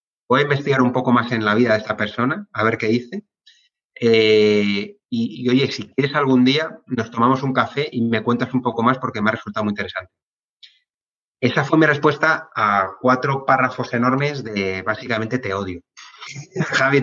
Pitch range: 110-130 Hz